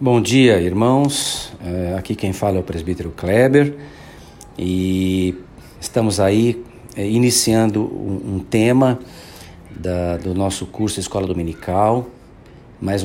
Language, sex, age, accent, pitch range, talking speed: Portuguese, male, 50-69, Brazilian, 95-130 Hz, 100 wpm